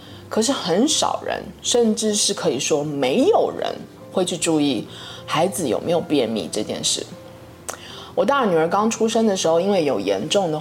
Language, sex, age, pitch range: Chinese, female, 20-39, 165-255 Hz